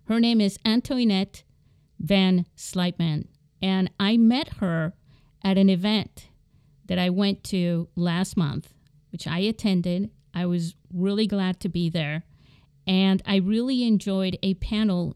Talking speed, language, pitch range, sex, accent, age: 140 wpm, English, 175-215 Hz, female, American, 50-69